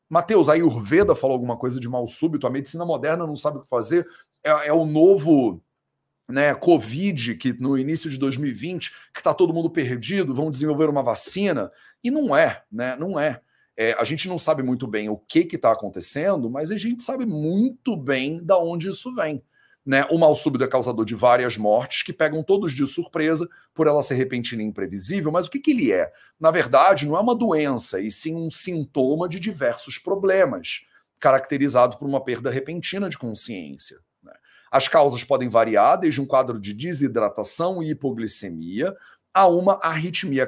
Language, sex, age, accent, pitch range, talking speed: Portuguese, male, 40-59, Brazilian, 125-175 Hz, 185 wpm